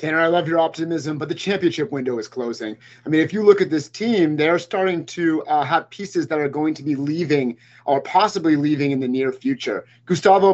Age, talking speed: 30-49, 220 wpm